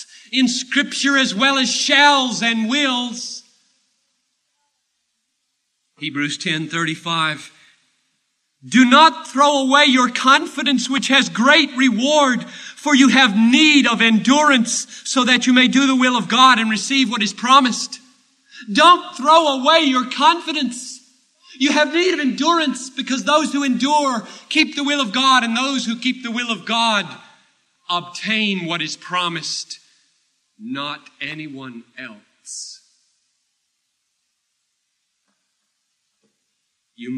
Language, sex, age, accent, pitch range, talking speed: English, male, 40-59, American, 175-265 Hz, 120 wpm